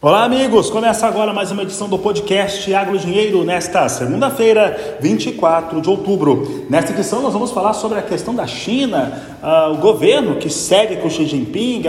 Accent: Brazilian